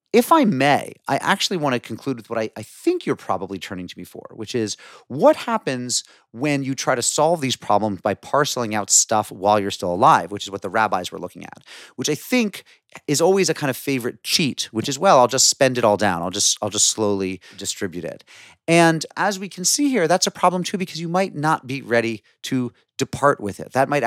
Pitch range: 105-150 Hz